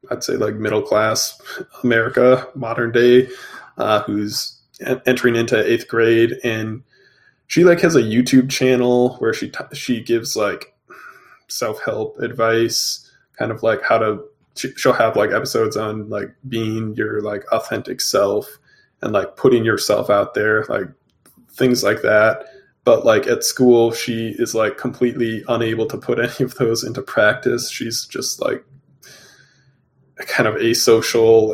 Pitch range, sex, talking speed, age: 115-135 Hz, male, 145 wpm, 20-39